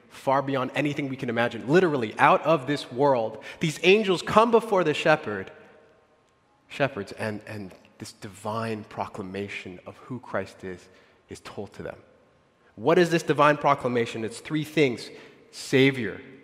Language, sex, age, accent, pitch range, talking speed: English, male, 30-49, American, 110-150 Hz, 145 wpm